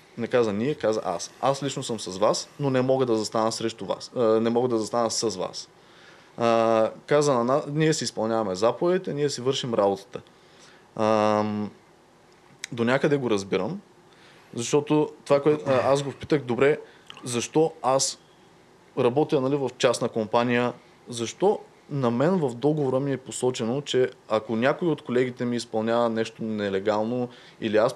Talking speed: 150 wpm